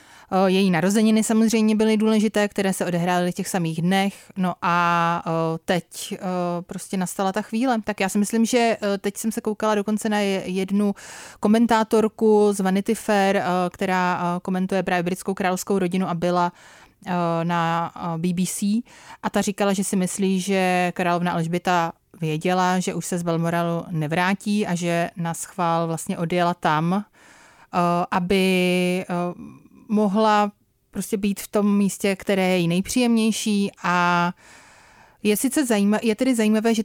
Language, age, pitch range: Czech, 30-49, 175-205 Hz